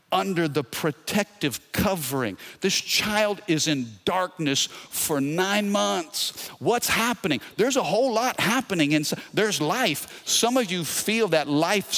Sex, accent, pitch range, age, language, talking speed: male, American, 135-190 Hz, 50-69, English, 135 wpm